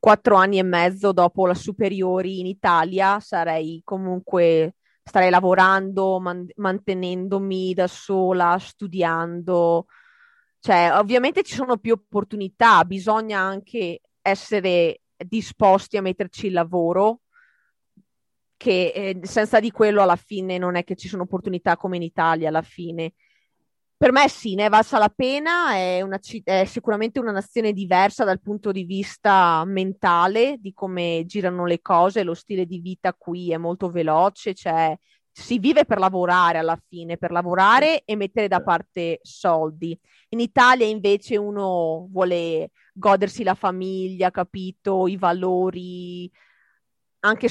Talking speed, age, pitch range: 135 wpm, 20-39, 180-210 Hz